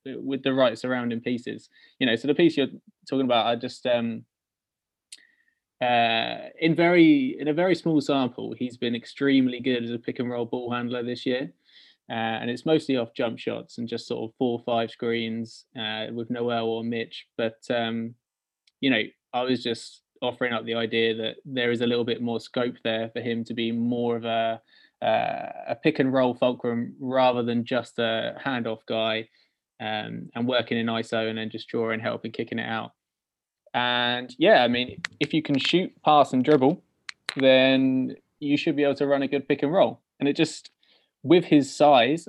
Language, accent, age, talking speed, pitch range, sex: English, British, 20-39, 195 wpm, 115-140 Hz, male